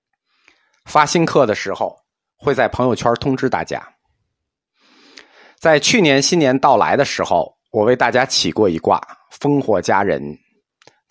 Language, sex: Chinese, male